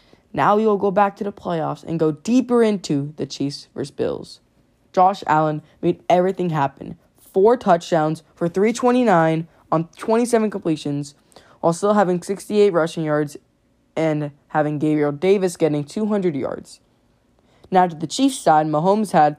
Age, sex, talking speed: 10-29, female, 150 wpm